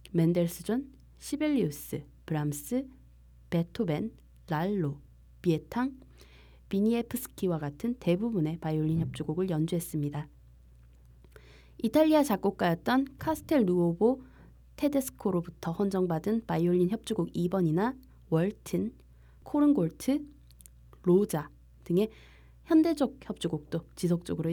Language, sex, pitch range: Korean, female, 150-205 Hz